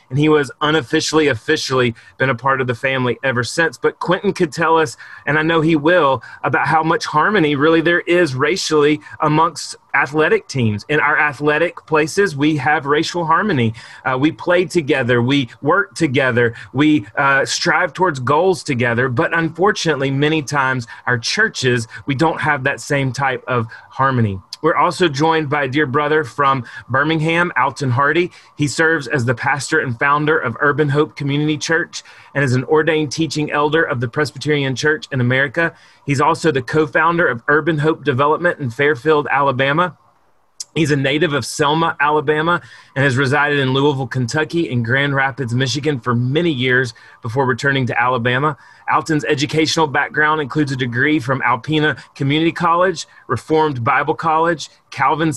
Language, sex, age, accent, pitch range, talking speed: English, male, 30-49, American, 130-160 Hz, 165 wpm